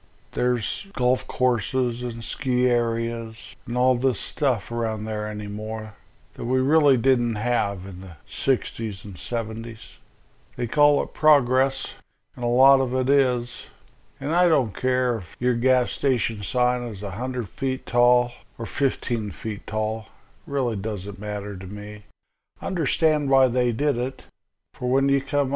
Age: 50-69